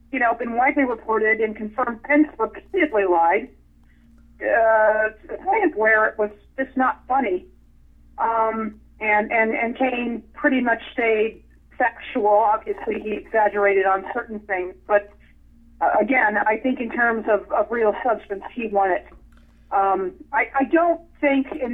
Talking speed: 150 wpm